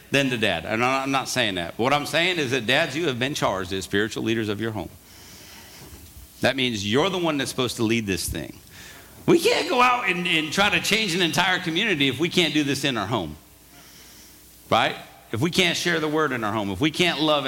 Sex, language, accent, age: male, English, American, 50-69